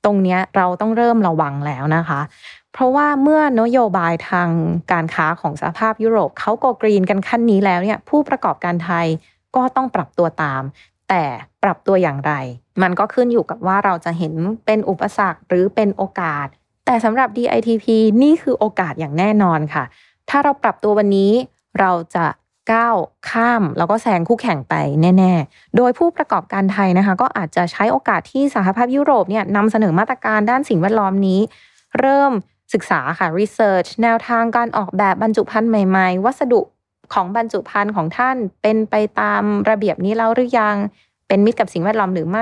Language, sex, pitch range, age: Thai, female, 175-225 Hz, 20-39